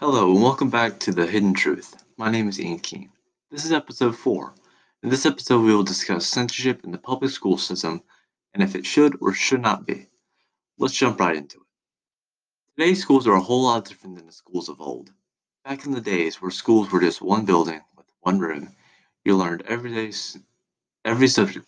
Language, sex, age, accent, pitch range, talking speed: English, male, 30-49, American, 95-130 Hz, 200 wpm